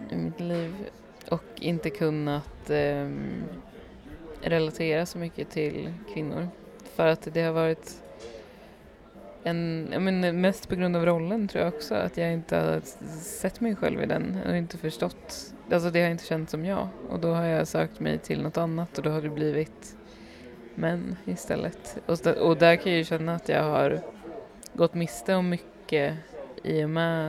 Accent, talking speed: native, 180 wpm